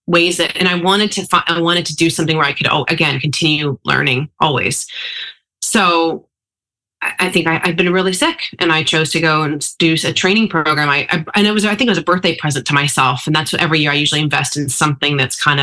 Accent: American